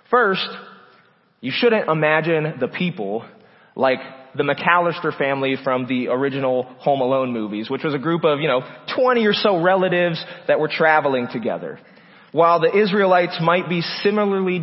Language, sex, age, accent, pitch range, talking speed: English, male, 30-49, American, 135-180 Hz, 150 wpm